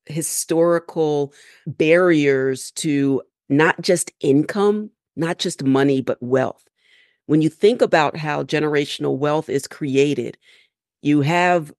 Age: 40-59